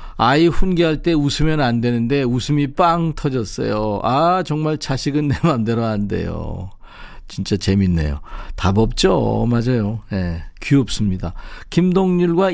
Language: Korean